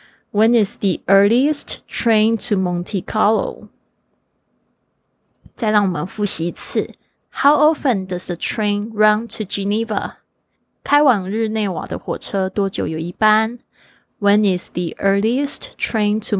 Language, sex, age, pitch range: Chinese, female, 20-39, 185-220 Hz